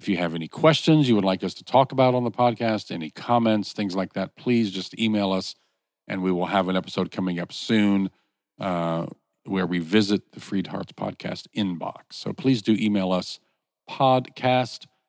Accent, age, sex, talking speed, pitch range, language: American, 50-69, male, 190 wpm, 85-110 Hz, English